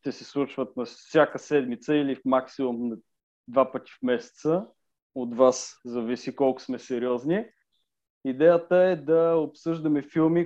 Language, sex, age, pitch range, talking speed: Bulgarian, male, 20-39, 130-160 Hz, 145 wpm